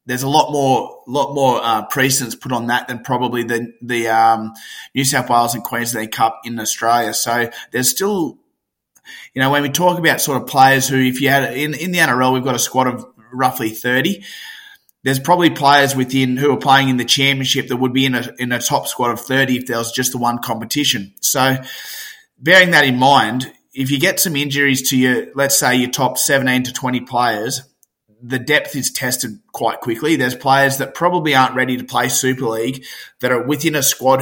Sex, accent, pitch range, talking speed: male, Australian, 125-140 Hz, 210 wpm